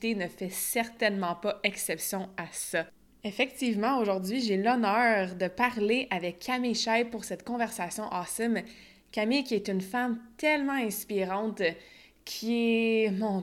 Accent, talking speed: Canadian, 135 wpm